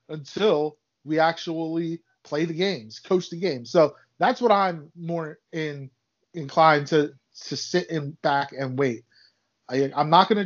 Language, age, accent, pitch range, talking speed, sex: English, 20-39, American, 150-185 Hz, 160 wpm, male